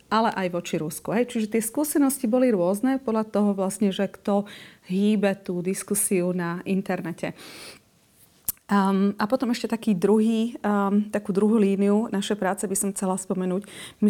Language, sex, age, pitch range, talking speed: Slovak, female, 30-49, 185-215 Hz, 155 wpm